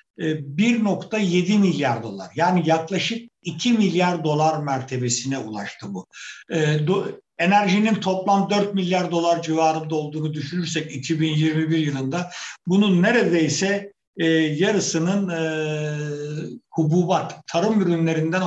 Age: 60-79